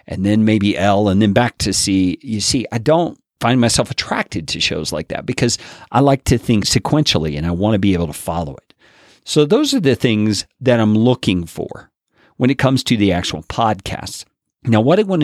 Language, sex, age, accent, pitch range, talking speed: English, male, 50-69, American, 95-130 Hz, 215 wpm